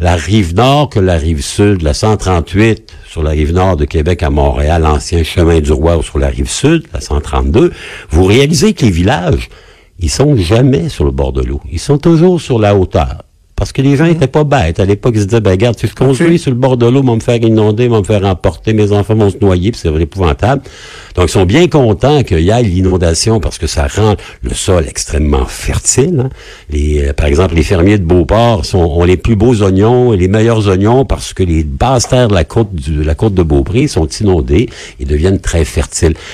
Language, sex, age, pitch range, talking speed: French, male, 60-79, 80-120 Hz, 230 wpm